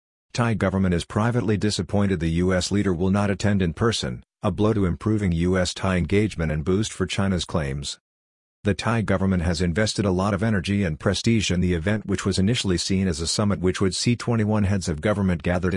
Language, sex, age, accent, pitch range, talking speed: English, male, 50-69, American, 90-105 Hz, 200 wpm